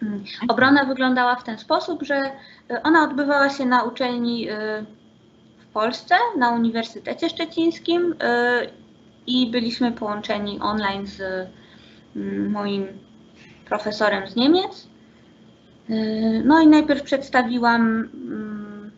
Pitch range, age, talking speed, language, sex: 210-255 Hz, 20-39, 90 wpm, Polish, female